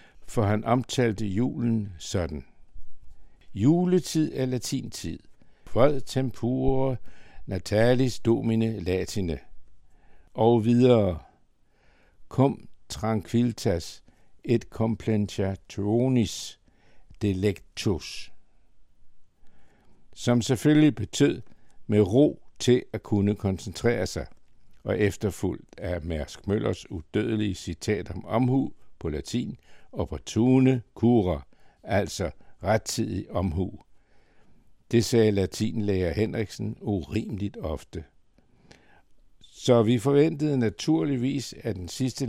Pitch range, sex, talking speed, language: 95-120 Hz, male, 90 wpm, Danish